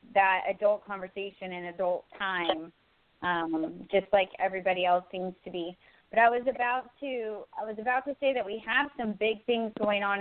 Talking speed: 190 wpm